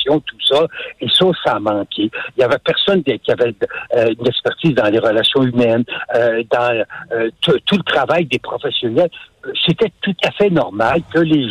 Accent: French